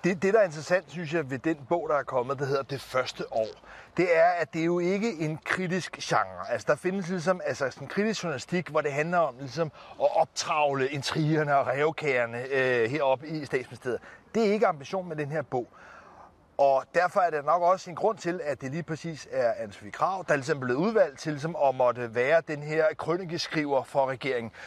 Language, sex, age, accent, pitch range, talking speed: Danish, male, 30-49, native, 140-185 Hz, 215 wpm